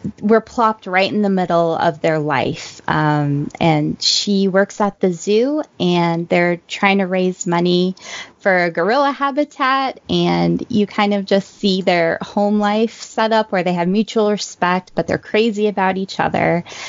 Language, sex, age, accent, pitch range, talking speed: English, female, 20-39, American, 170-205 Hz, 170 wpm